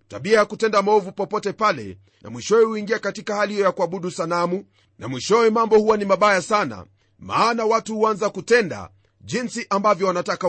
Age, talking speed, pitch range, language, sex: 40-59, 160 wpm, 160-210 Hz, Swahili, male